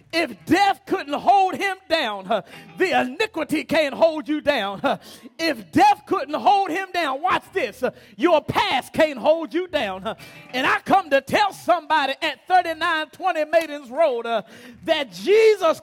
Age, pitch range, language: 30-49, 200-305 Hz, English